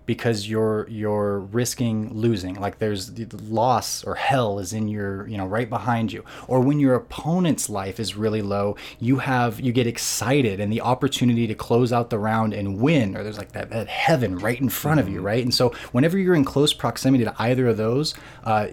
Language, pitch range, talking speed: English, 105-125 Hz, 210 wpm